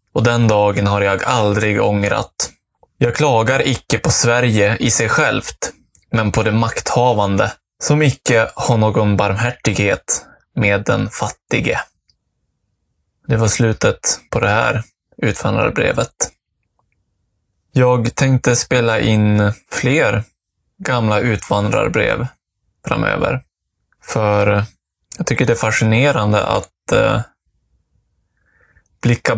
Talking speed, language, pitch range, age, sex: 100 wpm, Swedish, 100-120 Hz, 20-39, male